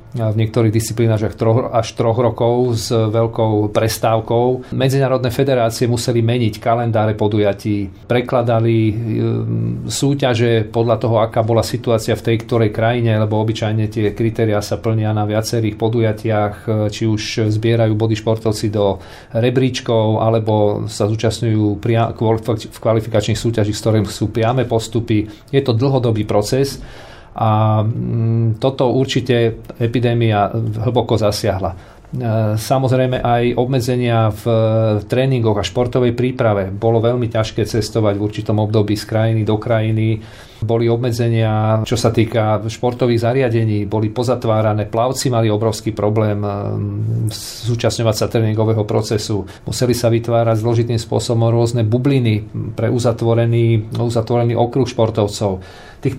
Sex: male